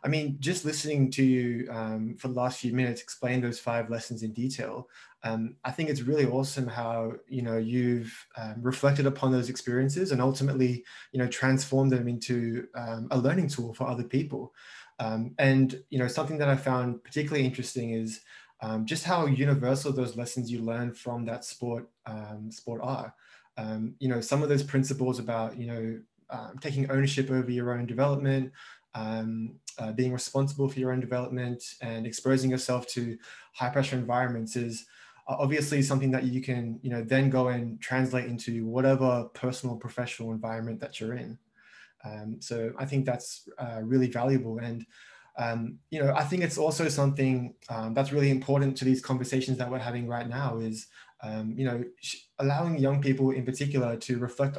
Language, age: English, 20-39